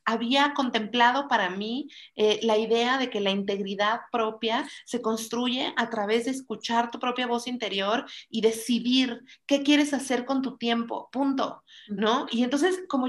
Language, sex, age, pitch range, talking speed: Spanish, female, 40-59, 200-245 Hz, 160 wpm